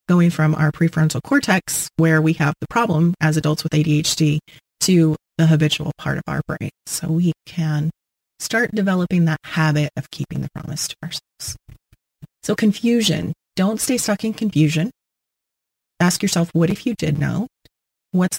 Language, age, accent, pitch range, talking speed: English, 30-49, American, 155-180 Hz, 160 wpm